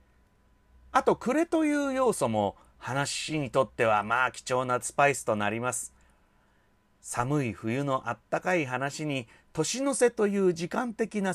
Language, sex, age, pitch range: Japanese, male, 40-59, 120-180 Hz